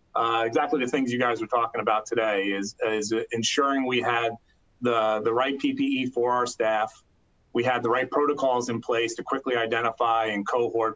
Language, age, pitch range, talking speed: English, 30-49, 110-125 Hz, 185 wpm